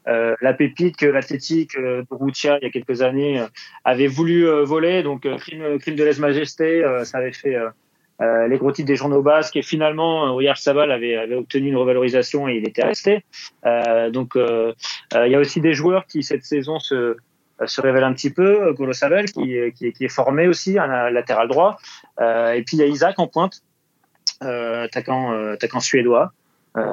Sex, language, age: male, French, 30-49